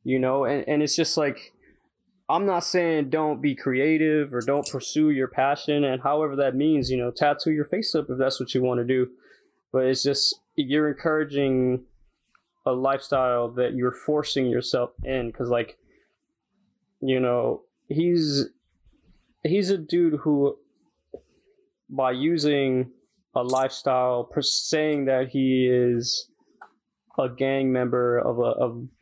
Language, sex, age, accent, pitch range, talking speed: English, male, 20-39, American, 130-160 Hz, 145 wpm